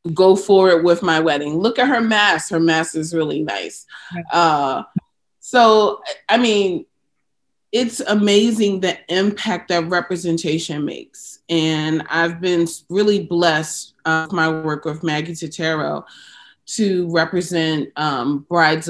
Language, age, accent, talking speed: English, 30-49, American, 135 wpm